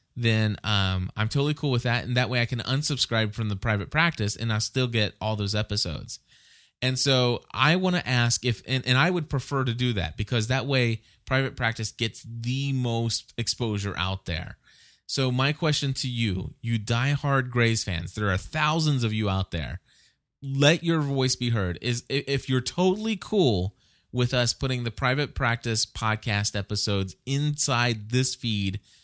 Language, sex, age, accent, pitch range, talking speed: English, male, 20-39, American, 105-130 Hz, 180 wpm